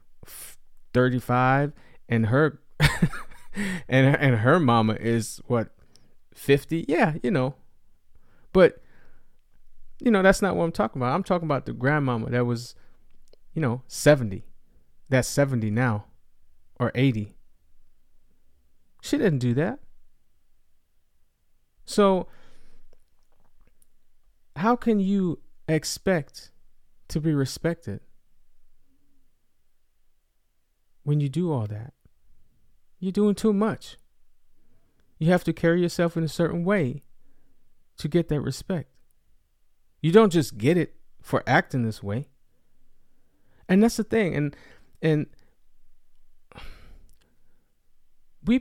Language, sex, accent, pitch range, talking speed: English, male, American, 110-175 Hz, 110 wpm